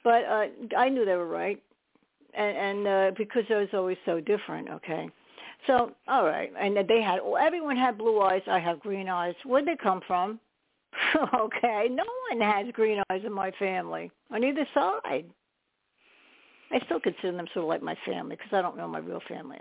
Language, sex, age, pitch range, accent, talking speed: English, female, 60-79, 185-225 Hz, American, 195 wpm